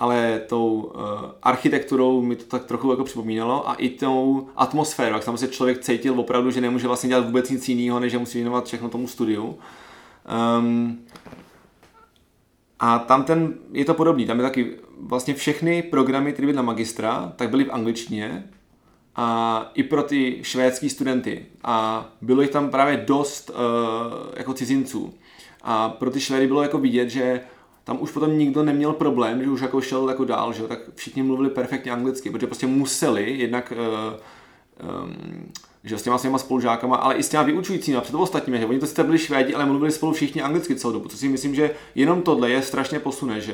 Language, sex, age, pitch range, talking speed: Czech, male, 20-39, 120-135 Hz, 190 wpm